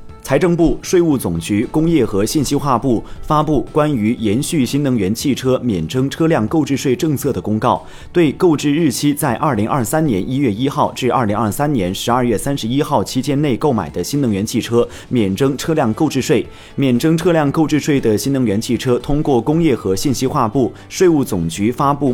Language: Chinese